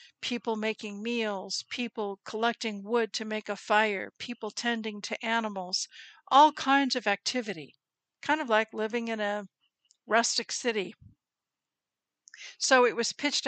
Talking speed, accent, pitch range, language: 135 wpm, American, 210-250 Hz, English